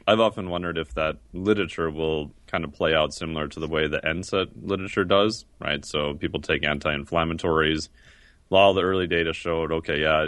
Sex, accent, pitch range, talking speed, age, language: male, American, 75-90 Hz, 185 wpm, 30-49, English